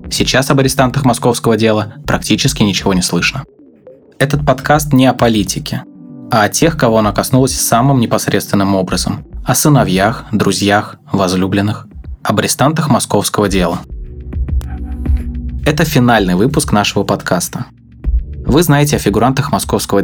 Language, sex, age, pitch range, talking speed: Russian, male, 20-39, 90-130 Hz, 125 wpm